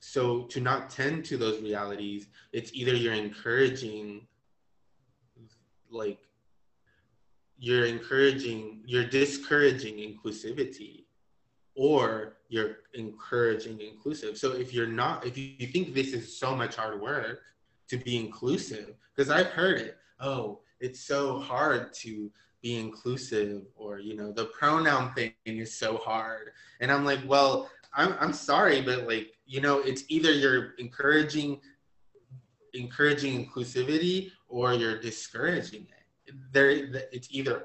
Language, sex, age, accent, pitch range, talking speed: English, male, 20-39, American, 110-135 Hz, 130 wpm